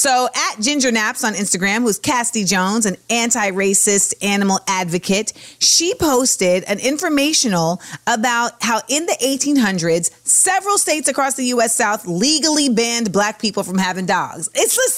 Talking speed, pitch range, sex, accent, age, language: 150 wpm, 205-270 Hz, female, American, 30-49, English